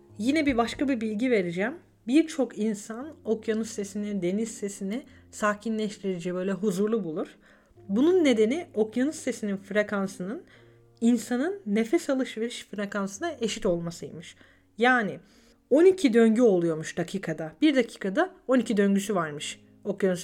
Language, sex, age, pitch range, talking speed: Turkish, female, 40-59, 200-275 Hz, 115 wpm